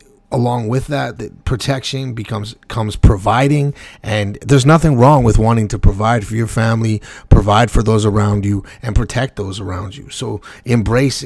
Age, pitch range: 30-49, 105-130 Hz